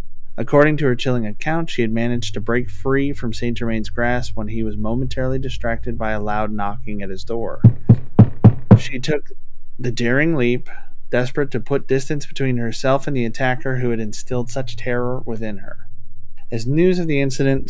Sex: male